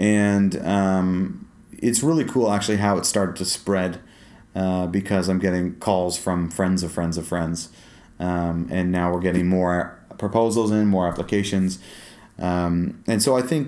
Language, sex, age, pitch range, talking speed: English, male, 30-49, 90-105 Hz, 160 wpm